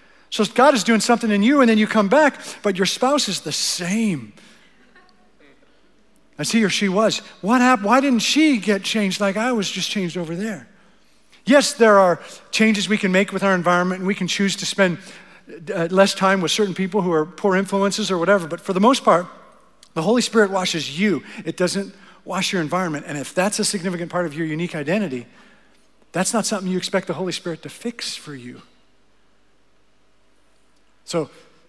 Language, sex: English, male